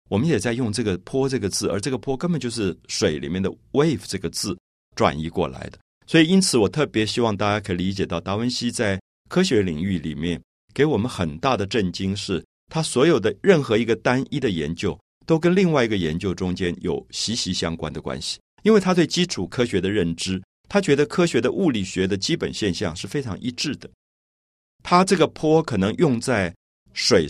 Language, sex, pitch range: Chinese, male, 90-135 Hz